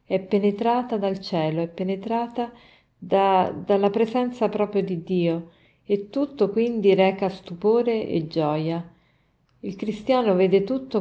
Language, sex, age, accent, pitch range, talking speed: Italian, female, 40-59, native, 180-215 Hz, 120 wpm